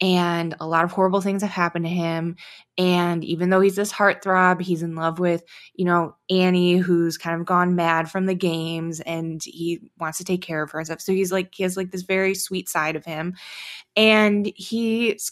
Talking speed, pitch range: 210 wpm, 170-205 Hz